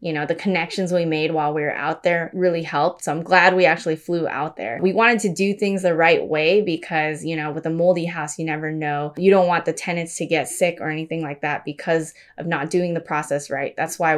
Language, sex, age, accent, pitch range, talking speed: English, female, 20-39, American, 160-190 Hz, 255 wpm